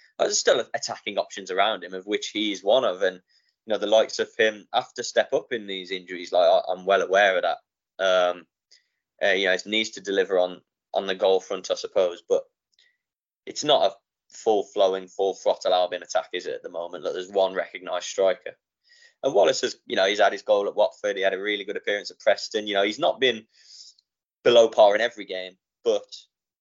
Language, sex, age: English, male, 20-39